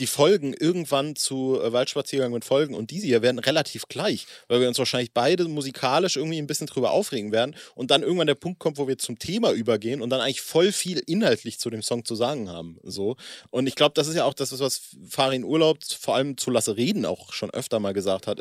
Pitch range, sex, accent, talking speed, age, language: 115-150 Hz, male, German, 230 wpm, 30-49, German